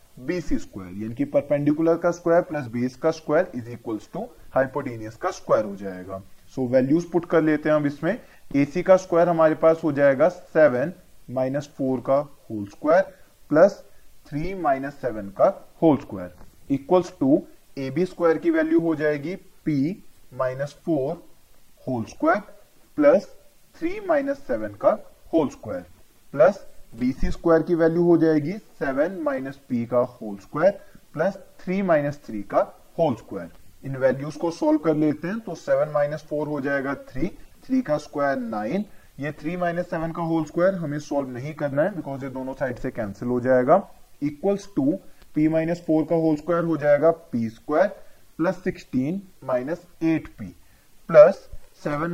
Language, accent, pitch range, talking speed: Hindi, native, 130-175 Hz, 155 wpm